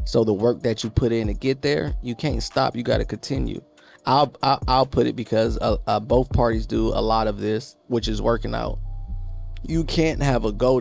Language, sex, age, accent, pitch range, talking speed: English, male, 20-39, American, 110-140 Hz, 230 wpm